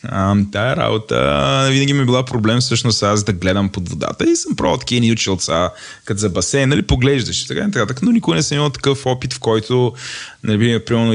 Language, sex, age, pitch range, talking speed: Bulgarian, male, 20-39, 95-125 Hz, 200 wpm